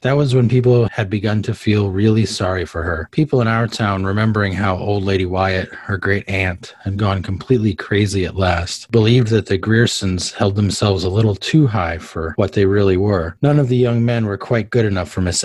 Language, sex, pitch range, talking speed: English, male, 95-115 Hz, 220 wpm